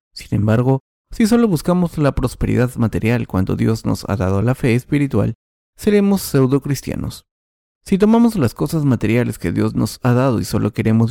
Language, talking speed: Spanish, 175 wpm